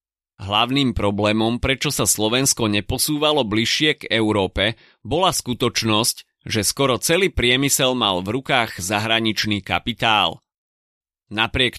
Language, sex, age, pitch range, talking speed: Slovak, male, 30-49, 105-135 Hz, 105 wpm